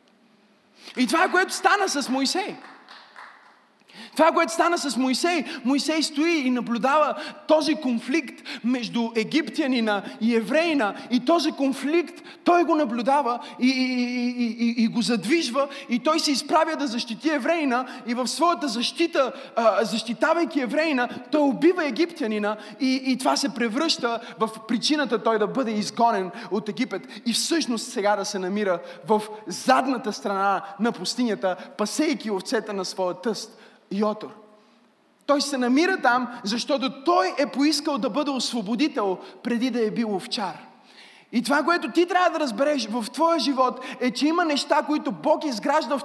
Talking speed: 150 wpm